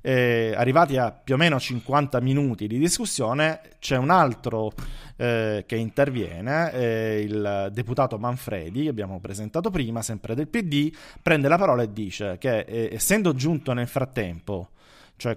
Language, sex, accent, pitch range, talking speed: Italian, male, native, 110-140 Hz, 150 wpm